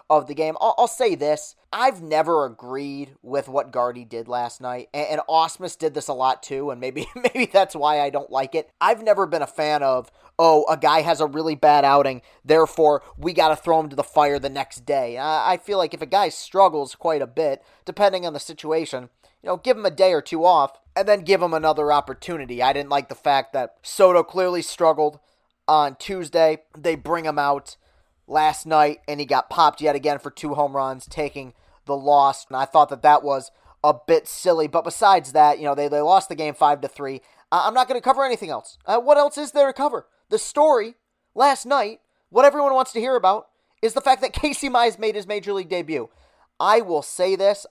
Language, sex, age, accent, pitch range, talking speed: English, male, 30-49, American, 140-190 Hz, 225 wpm